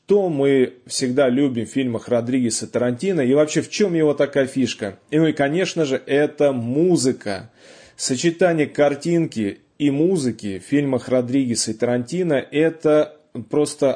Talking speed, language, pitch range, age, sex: 140 wpm, Russian, 125-165 Hz, 20-39, male